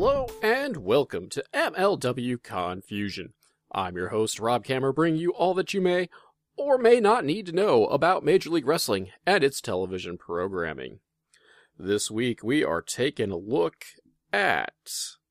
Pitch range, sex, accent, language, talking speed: 105-165 Hz, male, American, English, 155 wpm